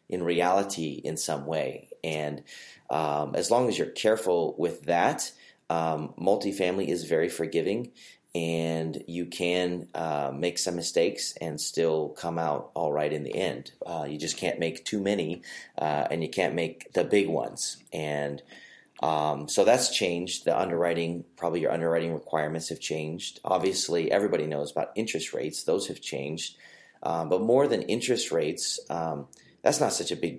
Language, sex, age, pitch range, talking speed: English, male, 30-49, 80-95 Hz, 165 wpm